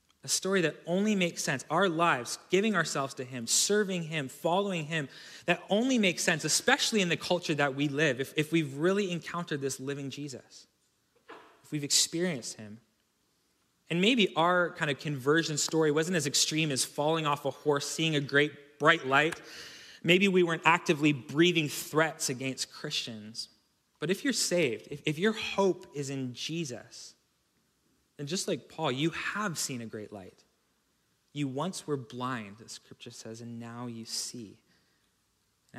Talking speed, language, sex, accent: 170 wpm, English, male, American